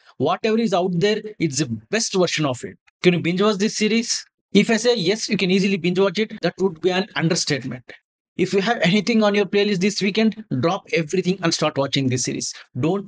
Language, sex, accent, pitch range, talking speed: English, male, Indian, 165-205 Hz, 220 wpm